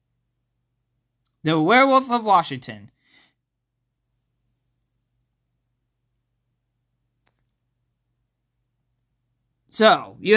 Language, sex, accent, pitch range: English, male, American, 140-215 Hz